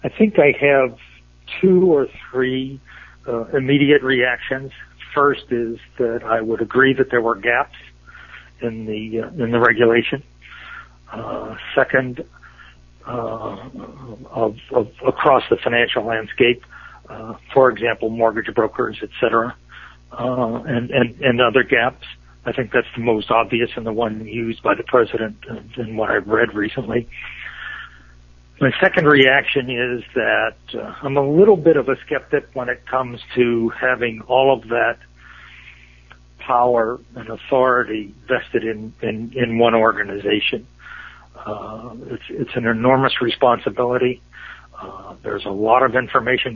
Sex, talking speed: male, 140 wpm